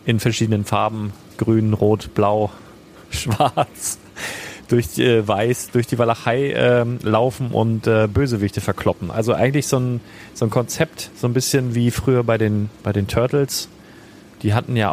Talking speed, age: 155 wpm, 30-49